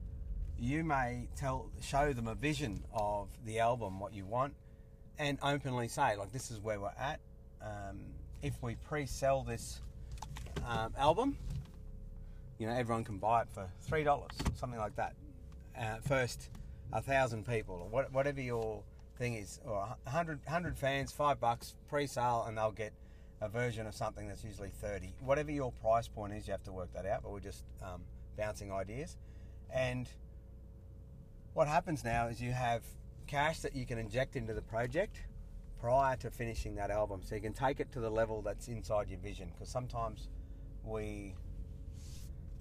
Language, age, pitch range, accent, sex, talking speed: English, 30-49, 100-125 Hz, Australian, male, 170 wpm